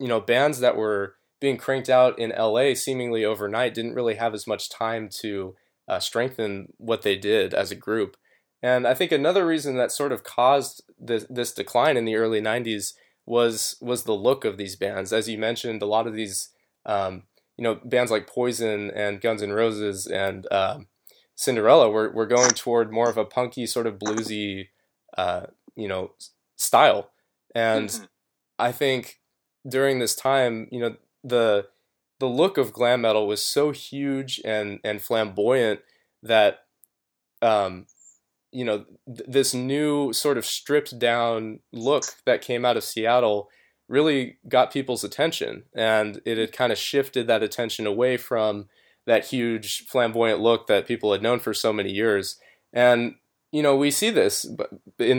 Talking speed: 170 wpm